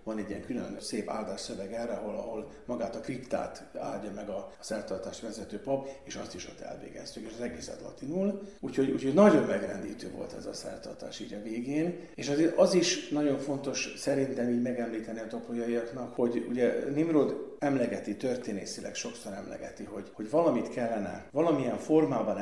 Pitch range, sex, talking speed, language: 105-145 Hz, male, 165 wpm, Hungarian